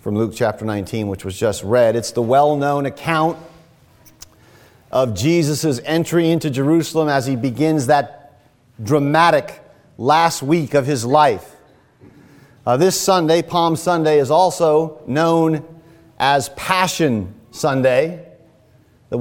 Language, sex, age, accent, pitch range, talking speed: English, male, 40-59, American, 135-200 Hz, 120 wpm